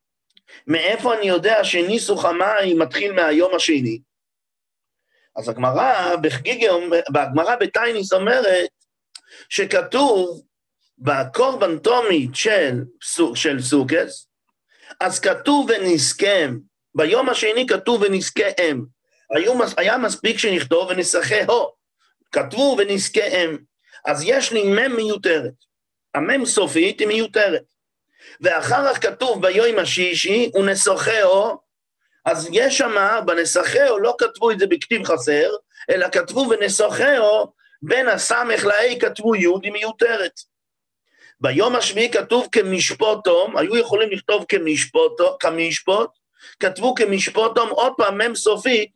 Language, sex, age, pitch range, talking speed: English, male, 50-69, 185-275 Hz, 100 wpm